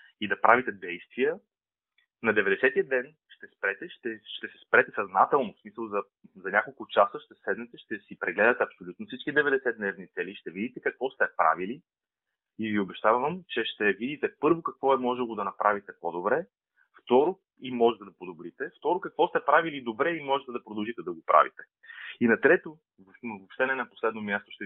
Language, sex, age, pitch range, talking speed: Bulgarian, male, 30-49, 110-155 Hz, 185 wpm